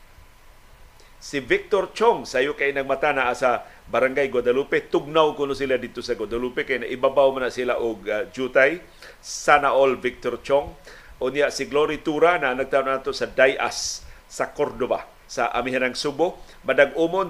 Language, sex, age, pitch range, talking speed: Filipino, male, 50-69, 125-160 Hz, 155 wpm